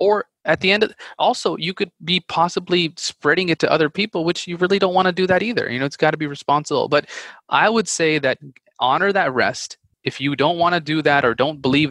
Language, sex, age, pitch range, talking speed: English, male, 20-39, 130-175 Hz, 245 wpm